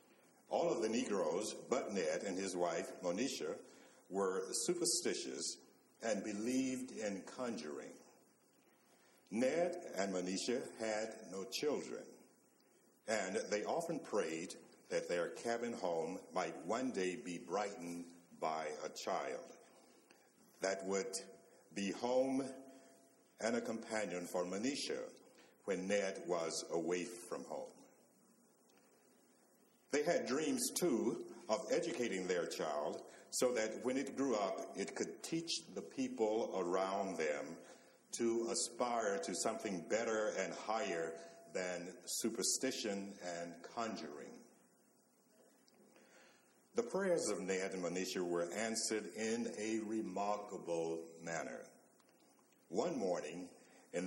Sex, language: male, English